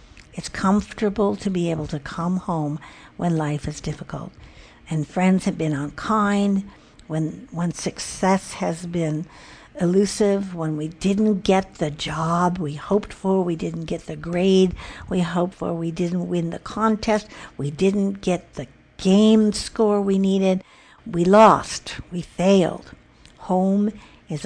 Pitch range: 160-195 Hz